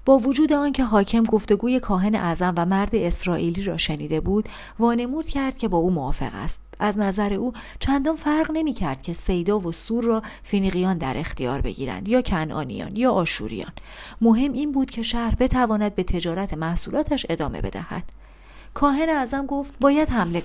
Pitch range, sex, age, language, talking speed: 170-245 Hz, female, 40-59, Persian, 165 wpm